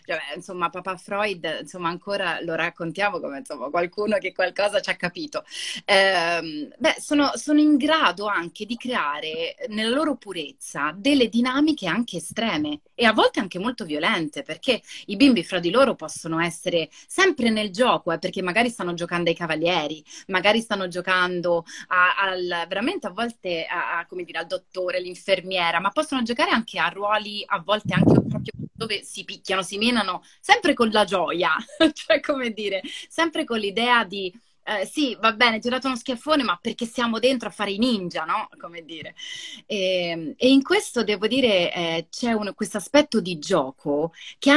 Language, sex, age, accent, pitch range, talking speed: Italian, female, 30-49, native, 175-245 Hz, 175 wpm